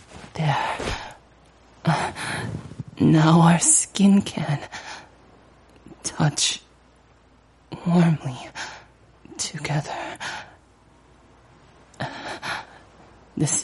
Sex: male